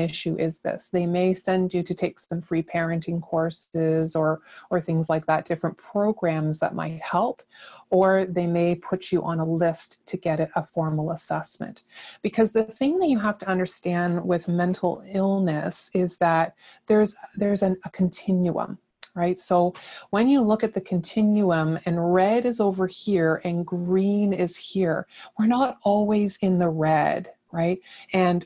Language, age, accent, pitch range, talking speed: English, 30-49, American, 165-195 Hz, 170 wpm